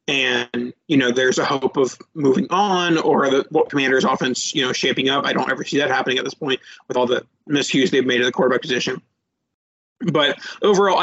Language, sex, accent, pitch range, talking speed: English, male, American, 135-175 Hz, 205 wpm